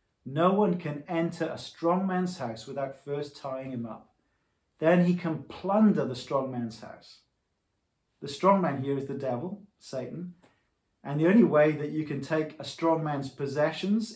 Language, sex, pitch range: English, male, 135-170 Hz